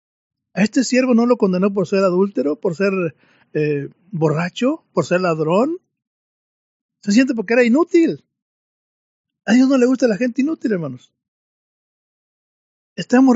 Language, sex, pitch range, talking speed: Spanish, male, 185-245 Hz, 140 wpm